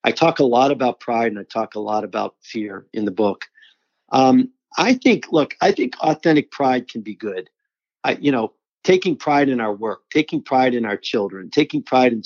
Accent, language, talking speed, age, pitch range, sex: American, English, 210 wpm, 50-69, 110-150 Hz, male